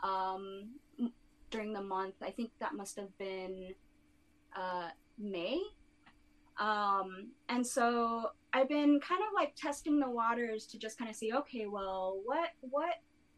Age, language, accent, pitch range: 20-39, English, American, 195-255 Hz